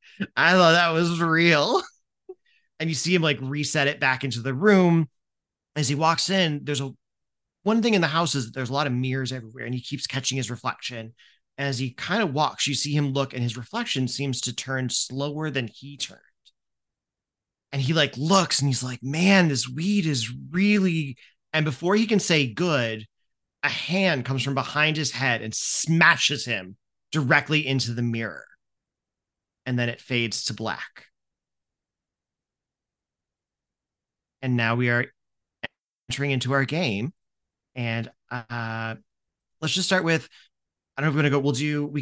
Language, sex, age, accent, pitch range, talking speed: English, male, 30-49, American, 125-165 Hz, 175 wpm